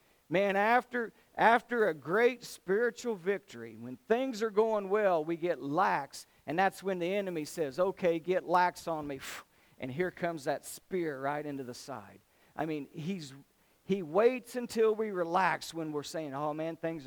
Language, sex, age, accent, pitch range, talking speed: English, male, 50-69, American, 145-195 Hz, 170 wpm